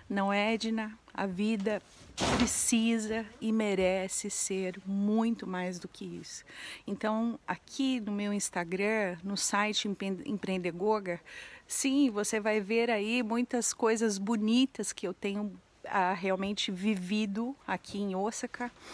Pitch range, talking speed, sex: 190-225 Hz, 125 wpm, female